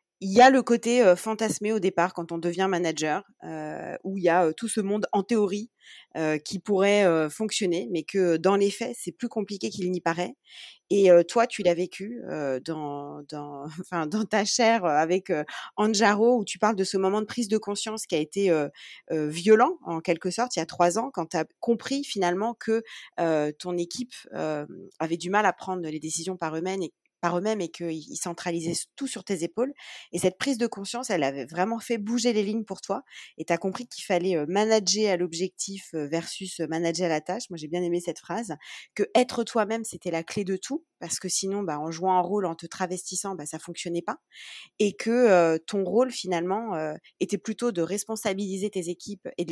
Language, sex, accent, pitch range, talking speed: French, female, French, 170-220 Hz, 215 wpm